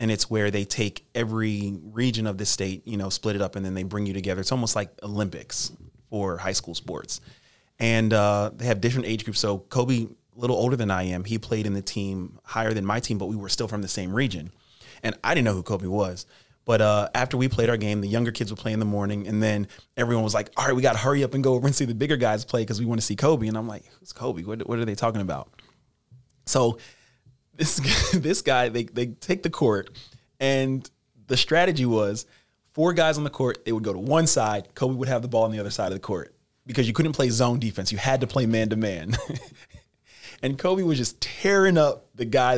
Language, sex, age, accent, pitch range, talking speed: English, male, 30-49, American, 105-130 Hz, 250 wpm